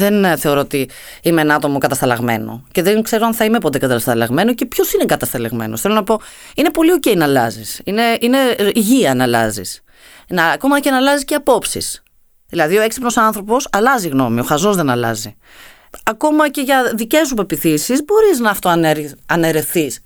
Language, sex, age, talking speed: Greek, female, 30-49, 175 wpm